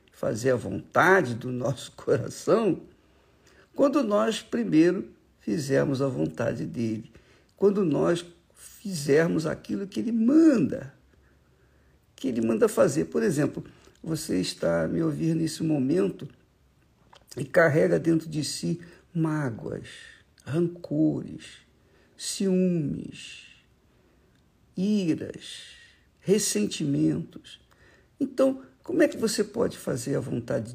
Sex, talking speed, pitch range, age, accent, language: male, 100 wpm, 135-205 Hz, 60-79, Brazilian, Portuguese